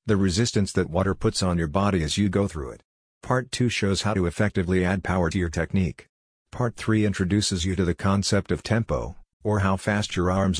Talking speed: 215 wpm